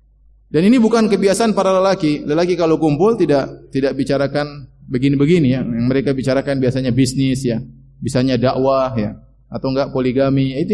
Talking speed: 150 wpm